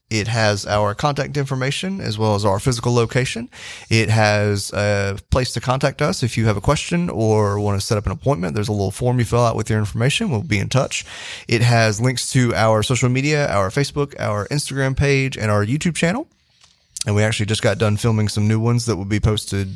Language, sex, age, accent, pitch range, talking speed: English, male, 30-49, American, 105-130 Hz, 225 wpm